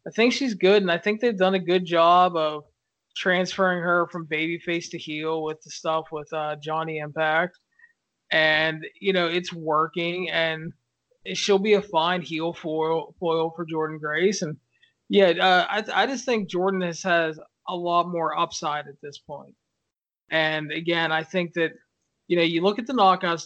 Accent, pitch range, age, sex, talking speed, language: American, 155-185 Hz, 20-39, male, 180 wpm, English